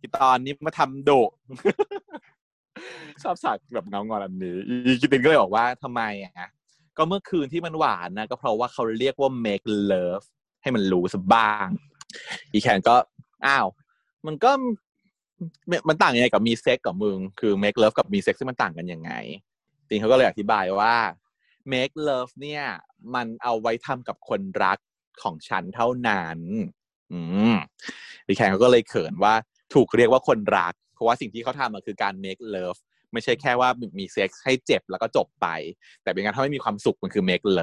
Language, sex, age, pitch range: Thai, male, 20-39, 105-155 Hz